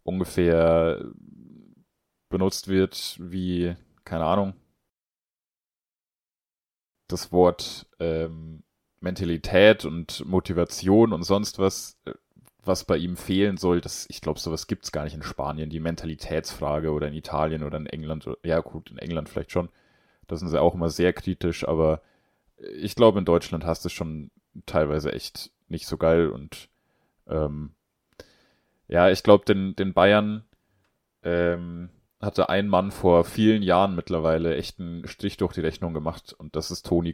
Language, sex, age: German, male, 30-49